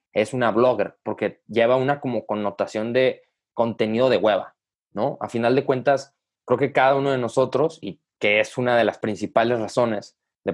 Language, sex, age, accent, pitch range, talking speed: Spanish, male, 20-39, Mexican, 105-130 Hz, 180 wpm